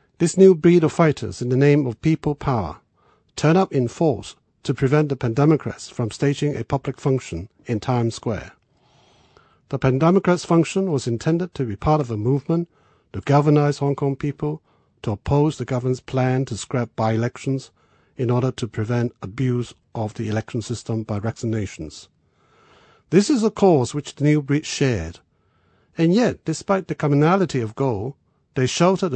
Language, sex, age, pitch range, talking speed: English, male, 50-69, 120-160 Hz, 165 wpm